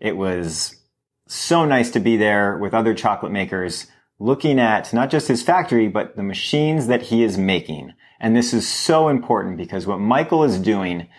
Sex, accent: male, American